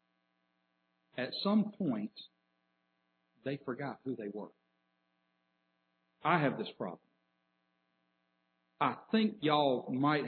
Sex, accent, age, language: male, American, 60-79, English